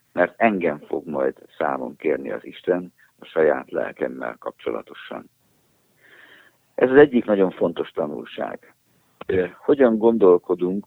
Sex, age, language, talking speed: male, 60-79, Hungarian, 110 wpm